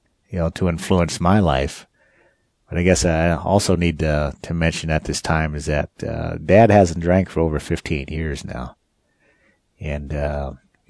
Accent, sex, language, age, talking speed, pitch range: American, male, English, 50-69, 170 wpm, 75-90 Hz